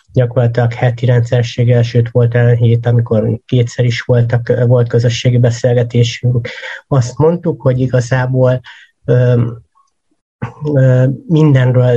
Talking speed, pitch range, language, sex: 105 wpm, 120-130 Hz, Hungarian, male